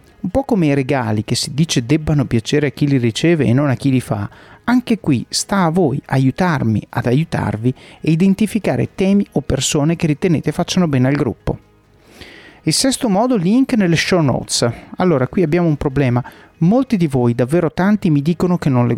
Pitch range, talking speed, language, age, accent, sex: 130-185 Hz, 195 wpm, Italian, 30-49, native, male